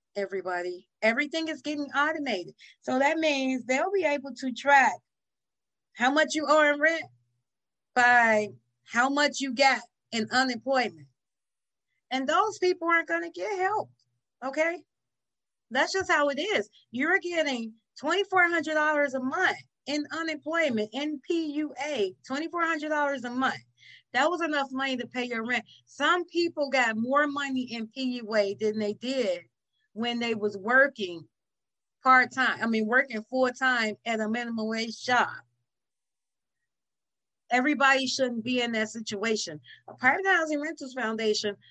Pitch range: 220-295 Hz